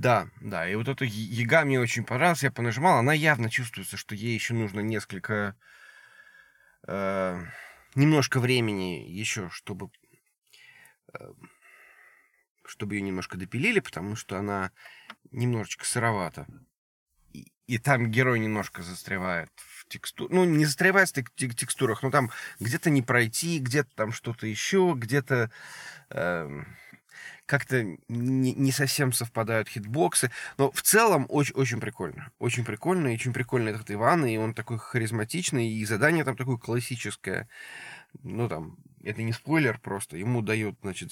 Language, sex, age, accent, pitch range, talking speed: Russian, male, 20-39, native, 105-135 Hz, 135 wpm